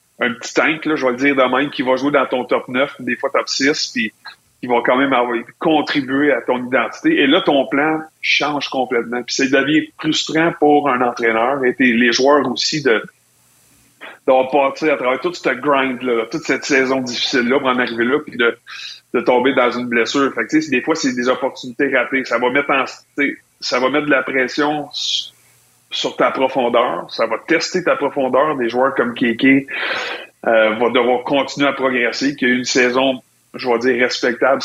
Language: French